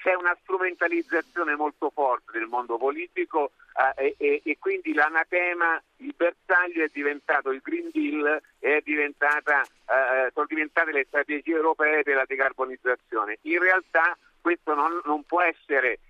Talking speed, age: 135 wpm, 50-69